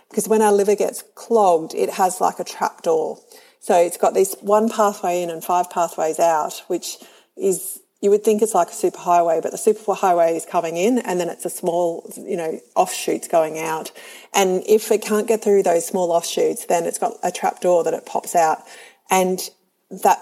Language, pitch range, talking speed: English, 170-225 Hz, 210 wpm